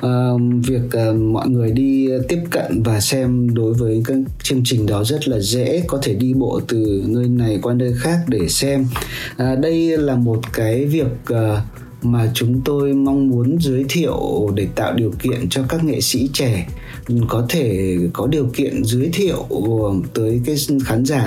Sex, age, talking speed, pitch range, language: male, 20-39, 185 wpm, 120-145 Hz, Vietnamese